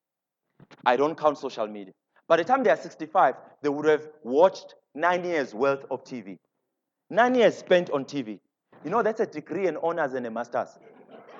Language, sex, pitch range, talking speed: English, male, 150-225 Hz, 190 wpm